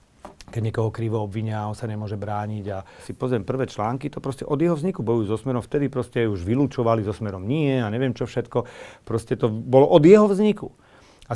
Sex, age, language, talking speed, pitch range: male, 40-59, Slovak, 200 wpm, 110-140 Hz